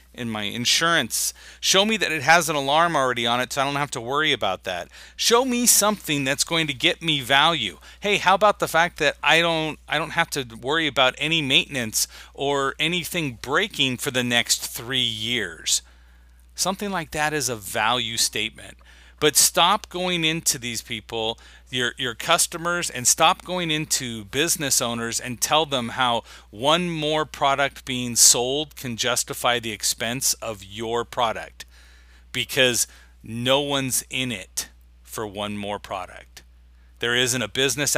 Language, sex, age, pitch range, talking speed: English, male, 40-59, 115-160 Hz, 165 wpm